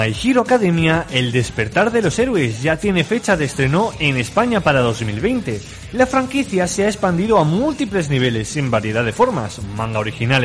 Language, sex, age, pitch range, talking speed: Spanish, male, 20-39, 125-190 Hz, 180 wpm